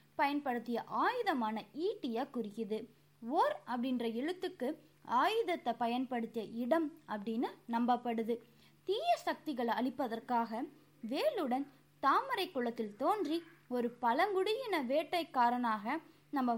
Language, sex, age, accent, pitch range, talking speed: Tamil, female, 20-39, native, 235-360 Hz, 85 wpm